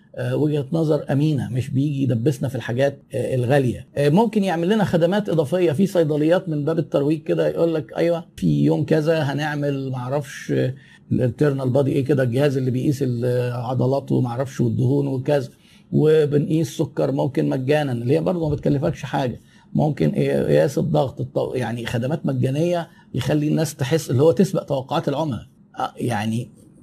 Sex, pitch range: male, 135-170 Hz